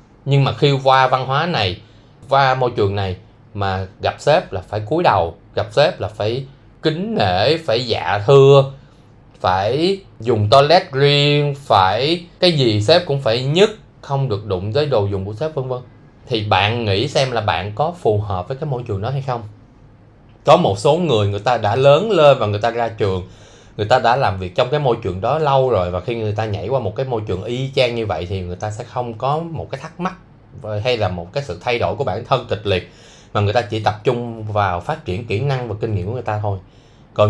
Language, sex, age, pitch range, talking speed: Vietnamese, male, 20-39, 105-135 Hz, 235 wpm